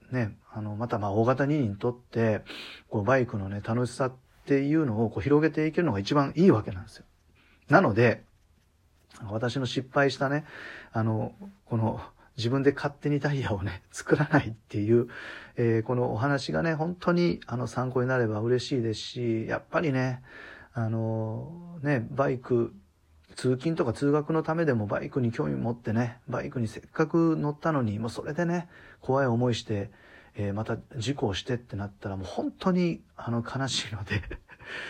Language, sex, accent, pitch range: Japanese, male, native, 110-145 Hz